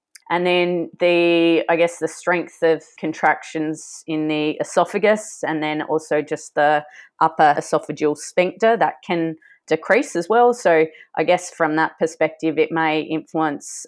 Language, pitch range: English, 150-170 Hz